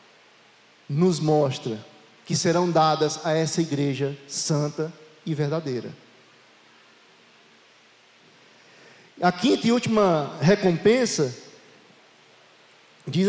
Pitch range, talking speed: 155-200 Hz, 75 wpm